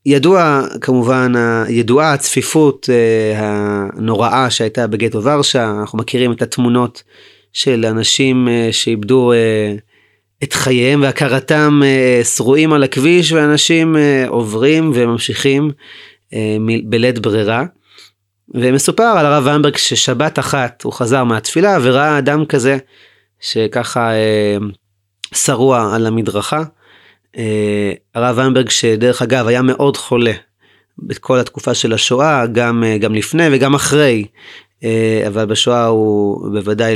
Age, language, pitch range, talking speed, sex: 30-49, Hebrew, 115-145 Hz, 105 wpm, male